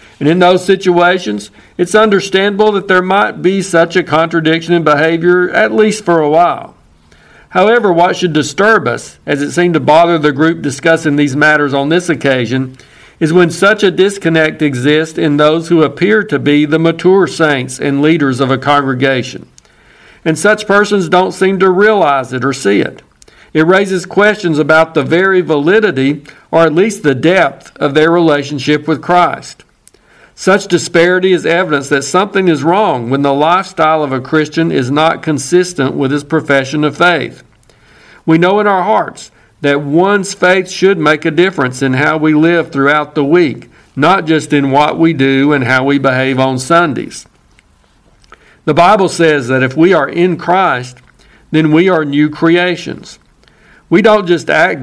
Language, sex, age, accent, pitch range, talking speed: English, male, 50-69, American, 145-180 Hz, 170 wpm